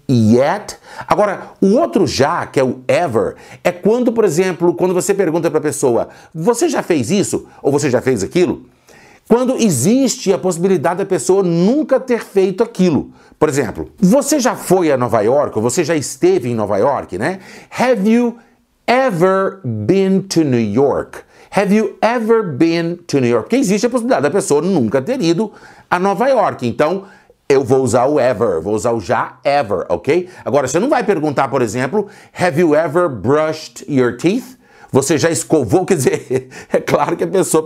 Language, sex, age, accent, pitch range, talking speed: Portuguese, male, 60-79, Brazilian, 145-205 Hz, 180 wpm